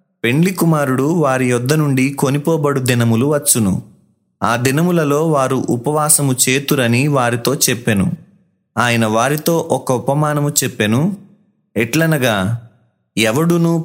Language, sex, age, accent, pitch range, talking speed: Telugu, male, 30-49, native, 120-155 Hz, 90 wpm